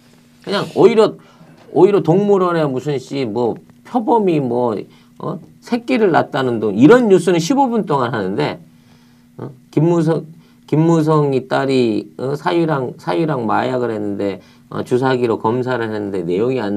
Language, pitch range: Korean, 105-175 Hz